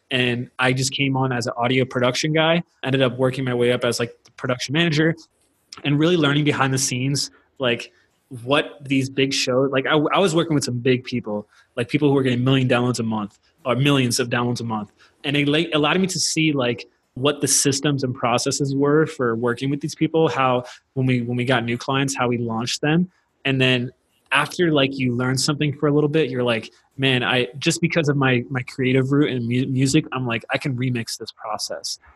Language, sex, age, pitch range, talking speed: English, male, 20-39, 125-145 Hz, 220 wpm